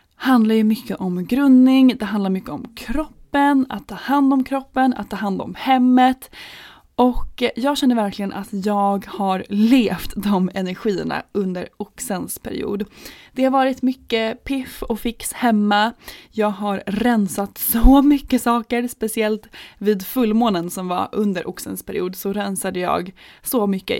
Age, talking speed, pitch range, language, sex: 20-39, 145 wpm, 200-255 Hz, Swedish, female